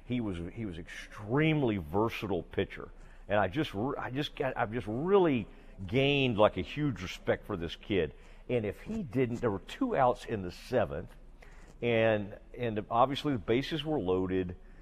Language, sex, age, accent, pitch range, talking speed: English, male, 50-69, American, 95-125 Hz, 170 wpm